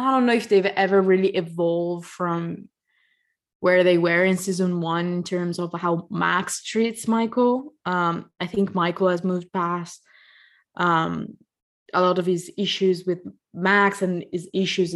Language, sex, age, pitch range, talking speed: English, female, 20-39, 175-195 Hz, 160 wpm